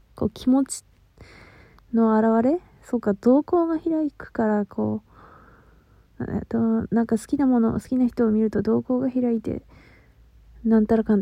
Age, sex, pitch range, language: 20-39, female, 200-245 Hz, Japanese